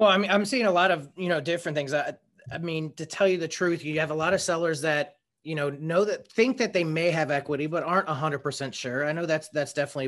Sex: male